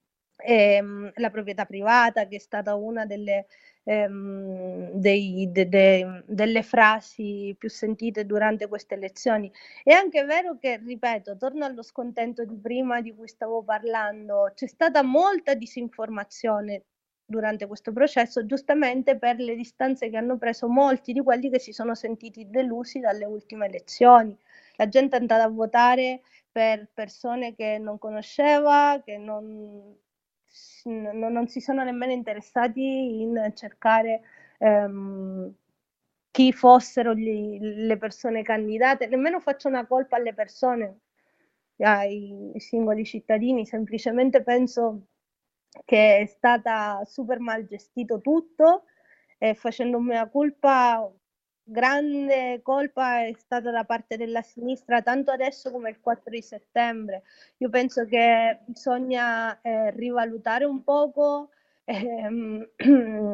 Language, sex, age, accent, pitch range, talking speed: Italian, female, 30-49, native, 215-255 Hz, 125 wpm